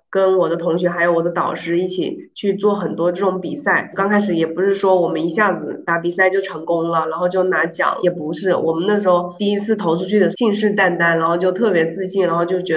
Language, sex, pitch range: Chinese, female, 170-200 Hz